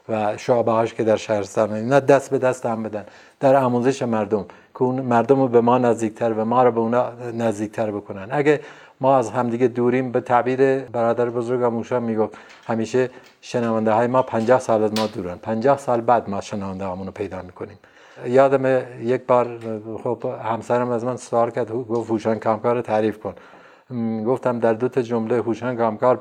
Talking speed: 175 wpm